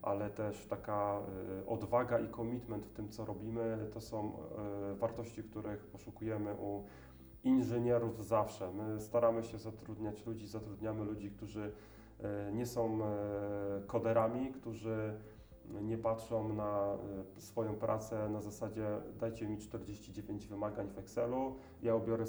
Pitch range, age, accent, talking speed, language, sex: 105-115 Hz, 30-49, native, 120 wpm, Polish, male